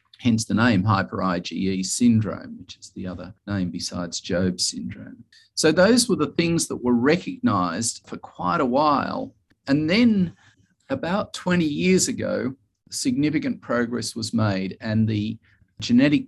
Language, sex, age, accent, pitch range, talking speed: English, male, 40-59, Australian, 100-135 Hz, 140 wpm